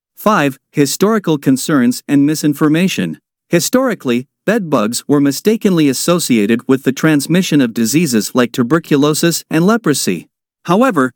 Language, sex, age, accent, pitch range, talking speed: English, male, 50-69, American, 135-180 Hz, 110 wpm